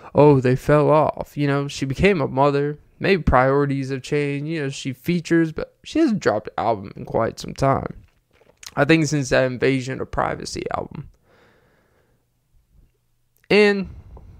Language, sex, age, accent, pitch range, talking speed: English, male, 20-39, American, 125-165 Hz, 155 wpm